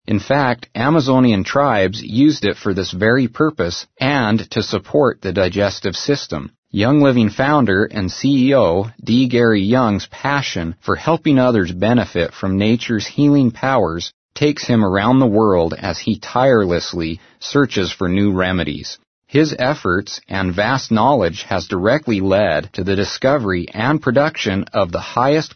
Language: English